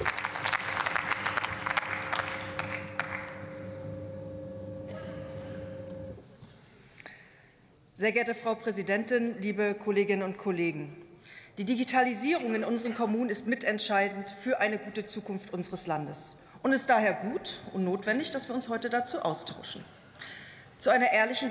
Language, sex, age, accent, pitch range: German, female, 40-59, German, 185-235 Hz